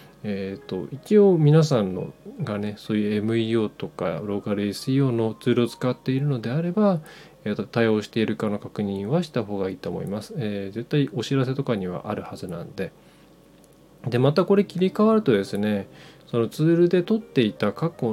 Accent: native